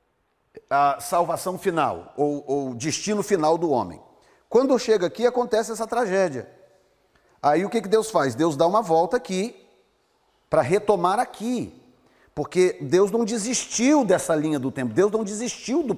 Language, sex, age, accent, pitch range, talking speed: Portuguese, male, 40-59, Brazilian, 155-210 Hz, 155 wpm